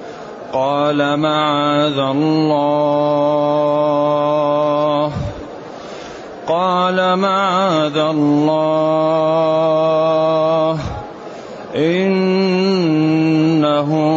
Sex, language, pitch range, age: male, Arabic, 145-160 Hz, 30-49